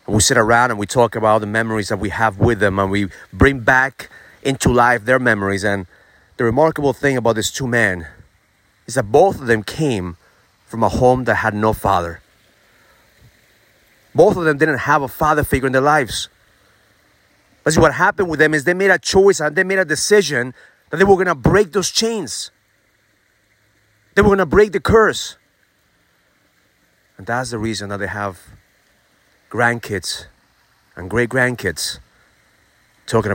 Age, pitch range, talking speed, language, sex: 30-49, 100-145 Hz, 175 wpm, English, male